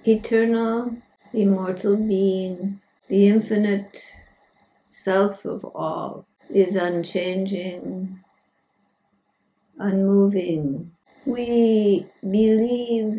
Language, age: English, 60-79